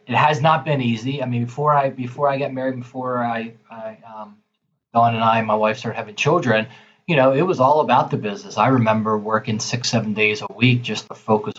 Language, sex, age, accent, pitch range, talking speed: English, male, 20-39, American, 110-130 Hz, 235 wpm